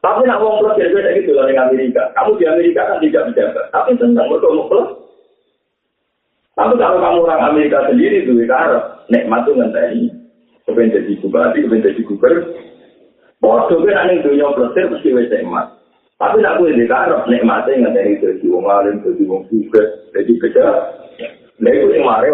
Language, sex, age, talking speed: Indonesian, male, 50-69, 140 wpm